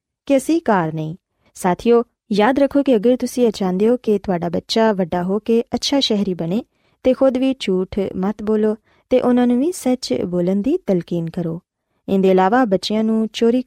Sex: female